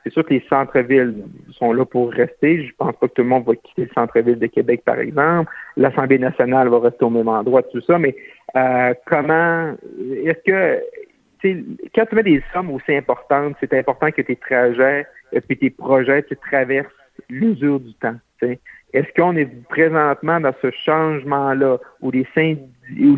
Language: French